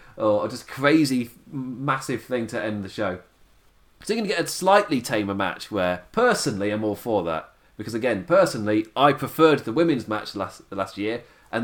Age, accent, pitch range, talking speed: 30-49, British, 105-155 Hz, 185 wpm